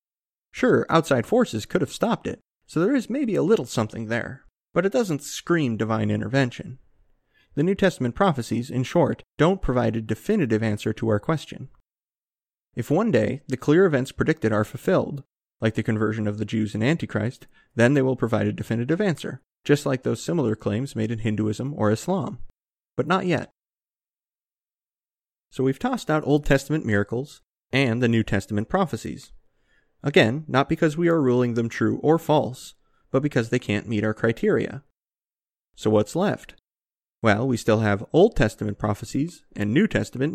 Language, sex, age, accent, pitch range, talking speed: English, male, 30-49, American, 110-150 Hz, 170 wpm